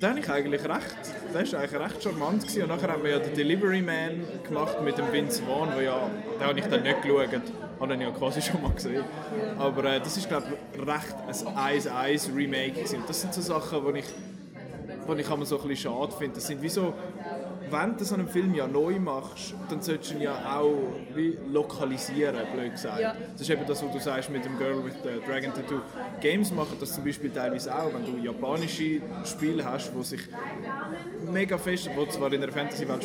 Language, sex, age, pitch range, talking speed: German, male, 20-39, 145-185 Hz, 210 wpm